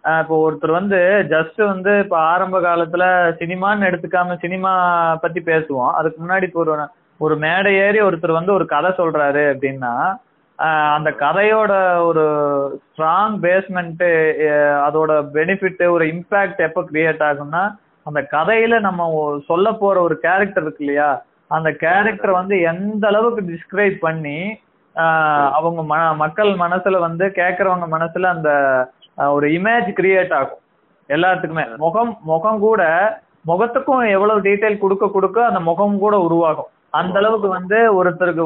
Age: 20-39